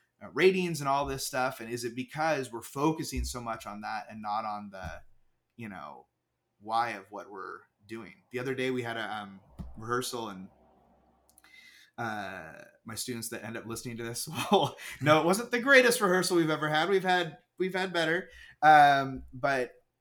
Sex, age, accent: male, 30-49, American